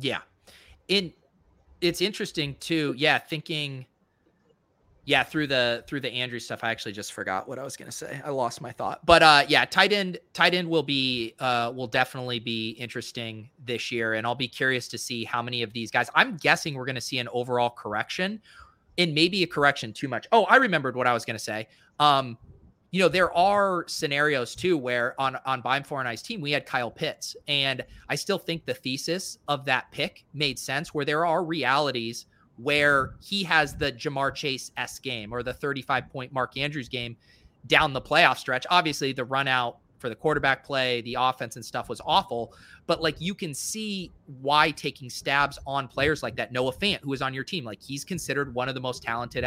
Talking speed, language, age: 205 wpm, English, 30-49